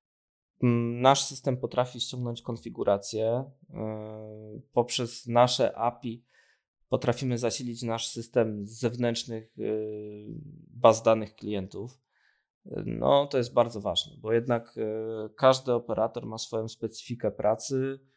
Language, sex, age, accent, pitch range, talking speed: Polish, male, 20-39, native, 115-135 Hz, 100 wpm